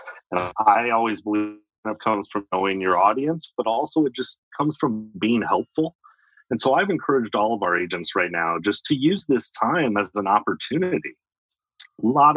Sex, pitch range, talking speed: male, 100-135 Hz, 180 wpm